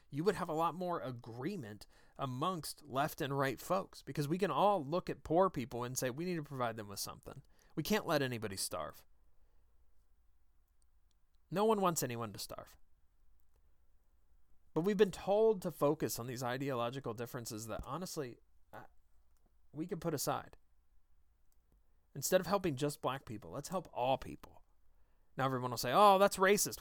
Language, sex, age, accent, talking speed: English, male, 30-49, American, 165 wpm